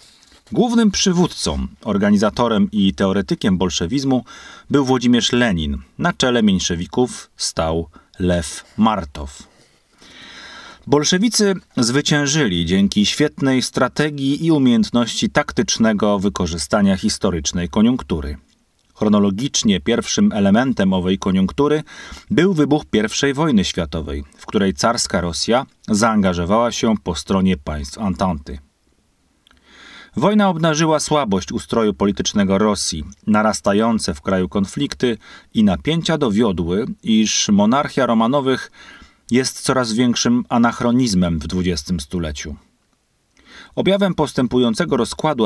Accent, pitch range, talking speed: native, 95-150 Hz, 95 wpm